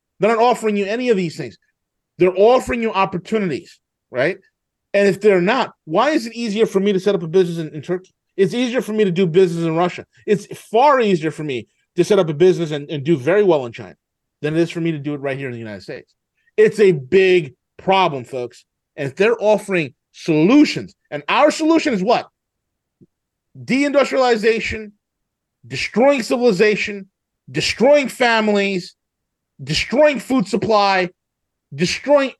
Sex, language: male, English